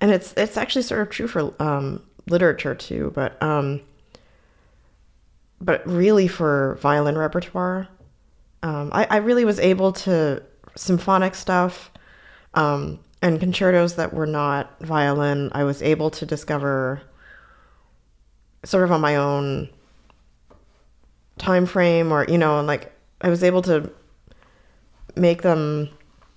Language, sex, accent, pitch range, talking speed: English, female, American, 140-170 Hz, 130 wpm